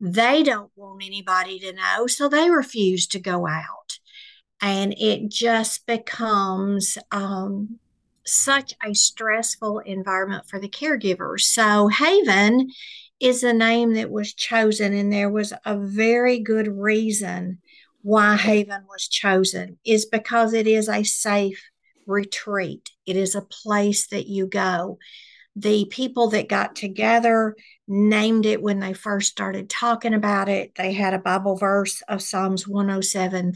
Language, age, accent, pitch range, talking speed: English, 50-69, American, 195-220 Hz, 140 wpm